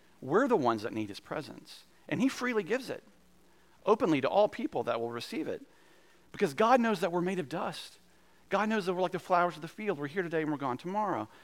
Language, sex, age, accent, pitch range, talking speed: English, male, 40-59, American, 135-185 Hz, 235 wpm